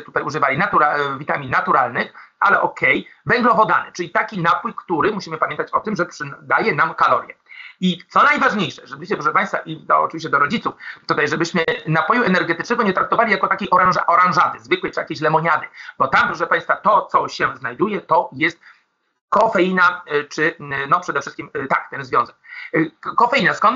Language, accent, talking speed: Polish, native, 155 wpm